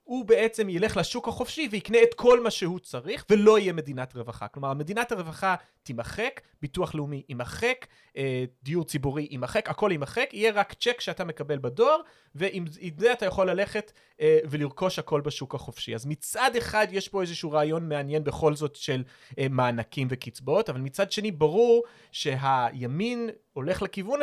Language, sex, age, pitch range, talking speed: Hebrew, male, 30-49, 140-195 Hz, 155 wpm